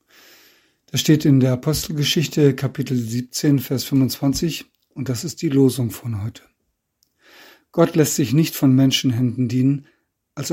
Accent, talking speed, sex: German, 135 wpm, male